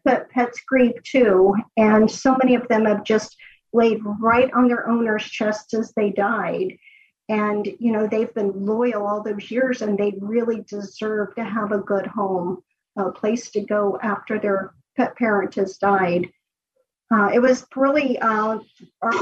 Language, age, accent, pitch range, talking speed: English, 50-69, American, 200-240 Hz, 160 wpm